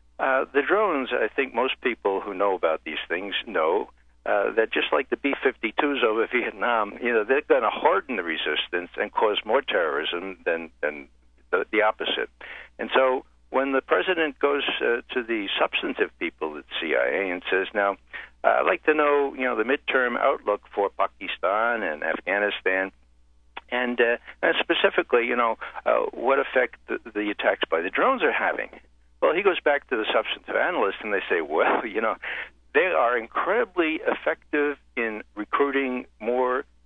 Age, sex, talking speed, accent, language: 60-79, male, 175 wpm, American, English